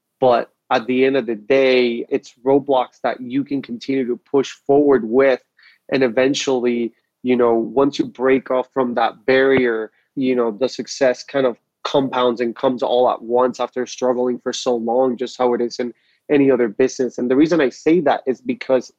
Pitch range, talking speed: 125-140 Hz, 195 wpm